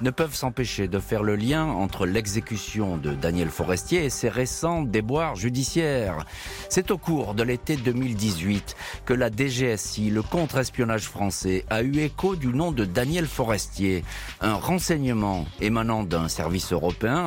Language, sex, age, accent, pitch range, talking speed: French, male, 40-59, French, 95-130 Hz, 150 wpm